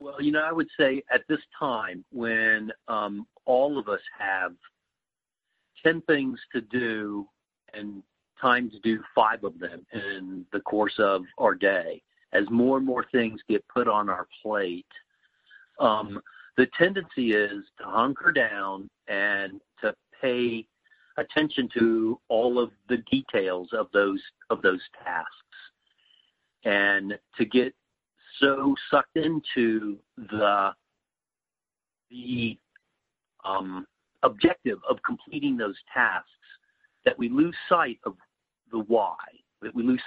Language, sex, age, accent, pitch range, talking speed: English, male, 50-69, American, 105-155 Hz, 130 wpm